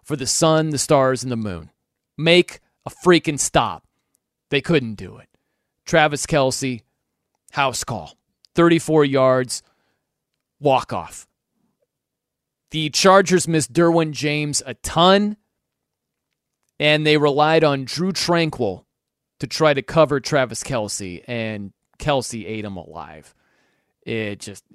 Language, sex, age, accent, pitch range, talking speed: English, male, 30-49, American, 125-170 Hz, 120 wpm